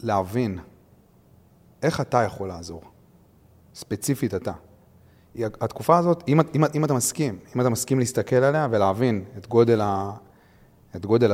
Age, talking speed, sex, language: 30-49, 120 wpm, male, Hebrew